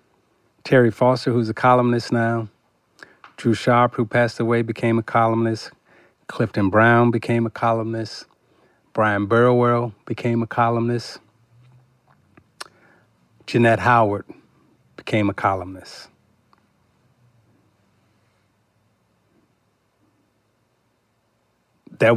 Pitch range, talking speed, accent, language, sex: 105-120 Hz, 80 wpm, American, English, male